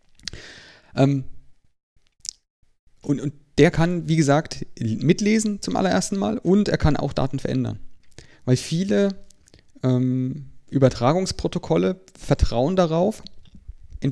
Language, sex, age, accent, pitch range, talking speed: German, male, 30-49, German, 120-150 Hz, 100 wpm